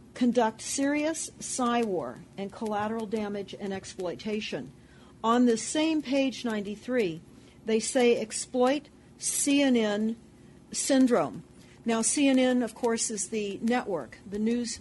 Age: 40-59